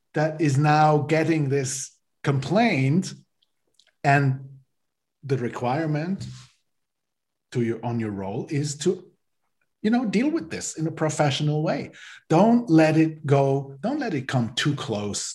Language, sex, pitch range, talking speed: English, male, 125-155 Hz, 135 wpm